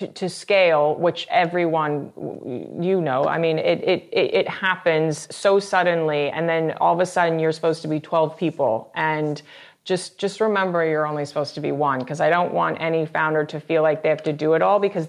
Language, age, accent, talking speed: English, 30-49, American, 205 wpm